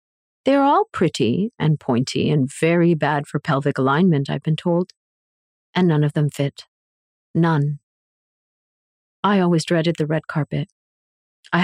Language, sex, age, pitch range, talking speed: English, female, 40-59, 150-185 Hz, 140 wpm